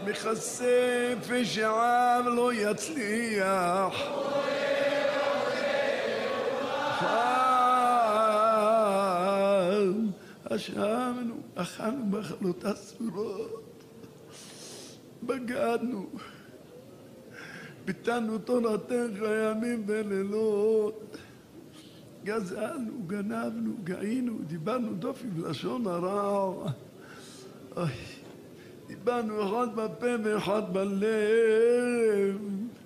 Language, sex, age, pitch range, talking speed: Hebrew, male, 60-79, 195-240 Hz, 45 wpm